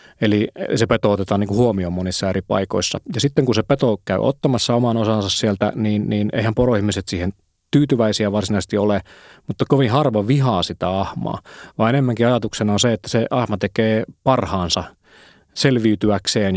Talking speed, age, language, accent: 160 wpm, 30-49, Finnish, native